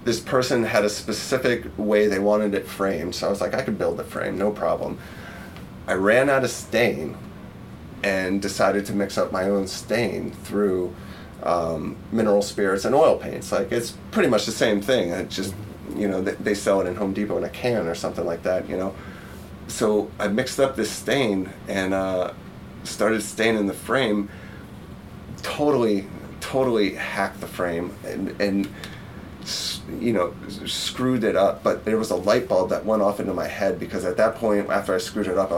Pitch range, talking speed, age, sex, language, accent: 95-110 Hz, 190 wpm, 30-49, male, English, American